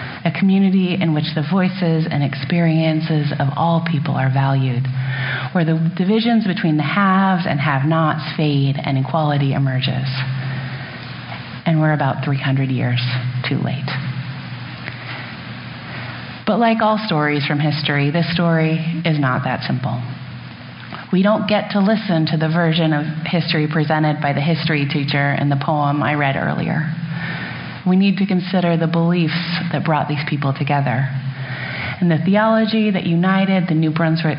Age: 30-49